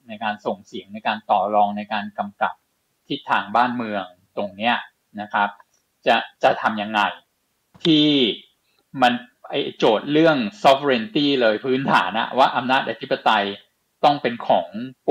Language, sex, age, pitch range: Thai, male, 20-39, 105-130 Hz